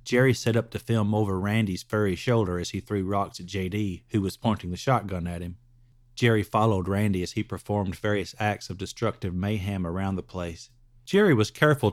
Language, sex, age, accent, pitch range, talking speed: English, male, 40-59, American, 100-130 Hz, 195 wpm